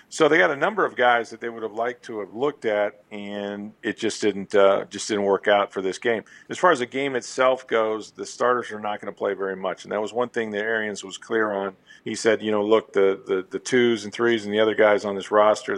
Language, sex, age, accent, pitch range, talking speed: English, male, 50-69, American, 100-115 Hz, 275 wpm